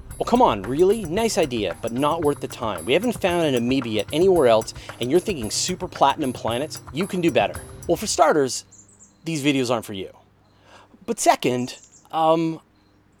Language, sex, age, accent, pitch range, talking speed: English, male, 30-49, American, 115-185 Hz, 180 wpm